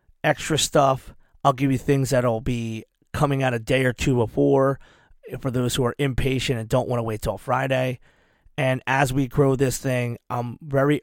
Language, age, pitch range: English, 30-49, 120-135 Hz